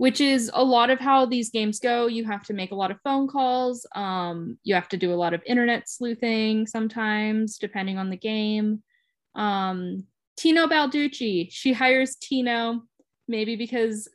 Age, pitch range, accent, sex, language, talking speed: 10-29, 195-240 Hz, American, female, English, 175 wpm